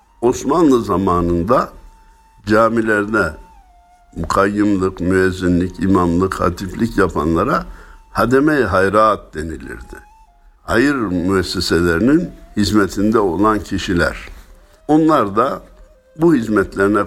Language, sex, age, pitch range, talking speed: Turkish, male, 60-79, 90-135 Hz, 70 wpm